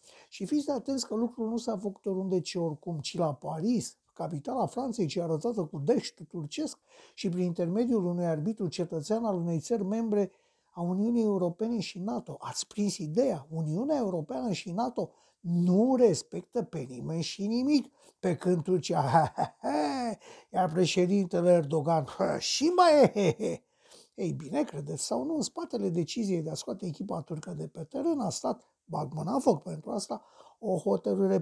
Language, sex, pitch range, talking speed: Romanian, male, 165-235 Hz, 160 wpm